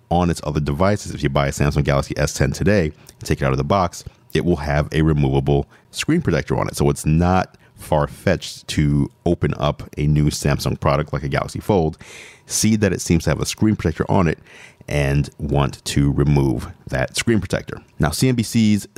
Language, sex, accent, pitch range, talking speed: English, male, American, 75-100 Hz, 200 wpm